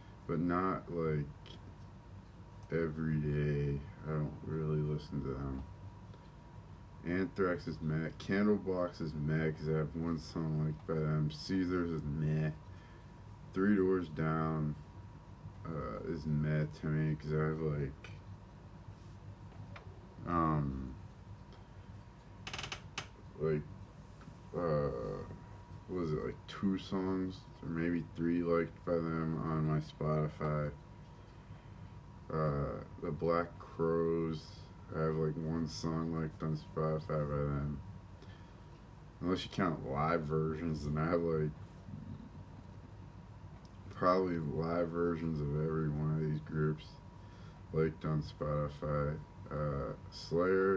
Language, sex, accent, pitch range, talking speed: English, male, American, 75-95 Hz, 110 wpm